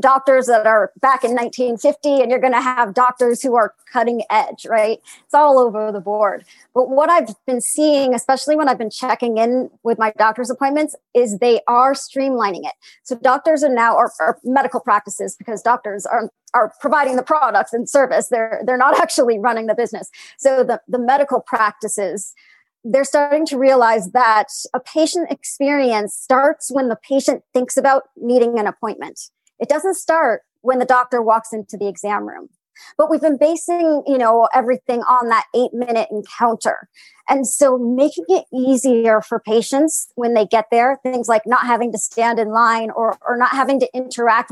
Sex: male